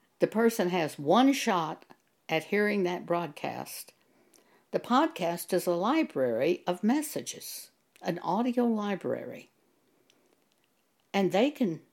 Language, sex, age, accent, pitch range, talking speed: English, female, 60-79, American, 165-215 Hz, 110 wpm